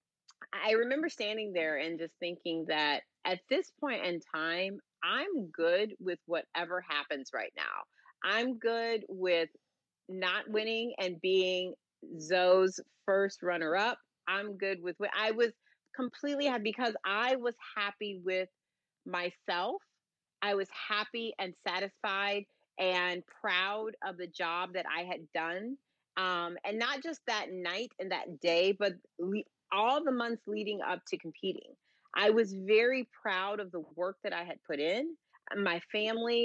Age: 30-49